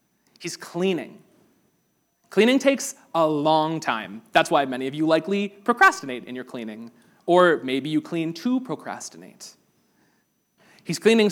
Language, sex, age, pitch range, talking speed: English, male, 30-49, 145-195 Hz, 135 wpm